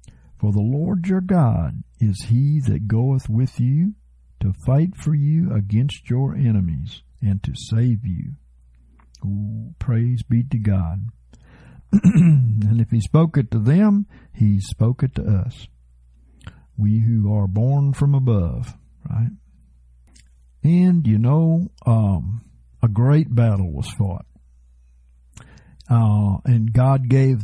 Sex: male